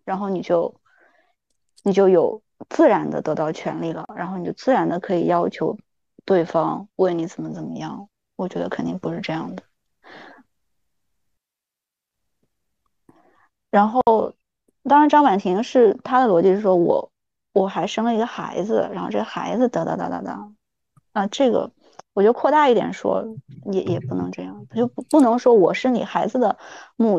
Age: 20-39